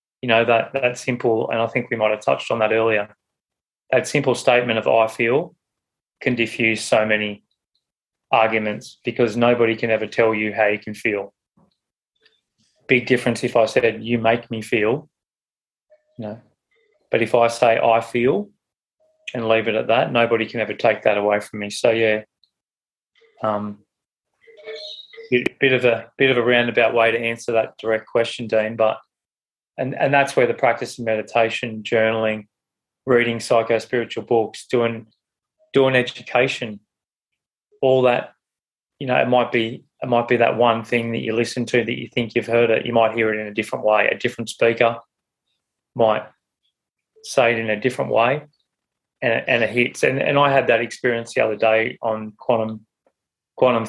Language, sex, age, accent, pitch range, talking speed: English, male, 20-39, Australian, 110-125 Hz, 175 wpm